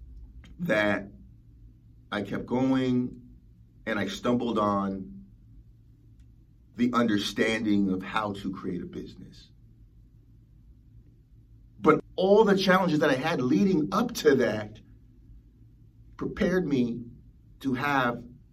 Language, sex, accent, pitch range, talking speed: English, male, American, 115-175 Hz, 100 wpm